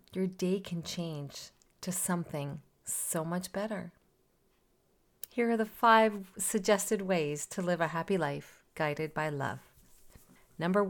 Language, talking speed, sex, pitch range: English, 130 wpm, female, 155-200 Hz